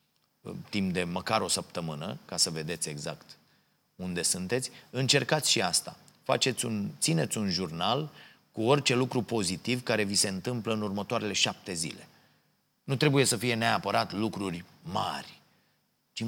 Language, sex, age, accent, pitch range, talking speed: Romanian, male, 30-49, native, 95-120 Hz, 140 wpm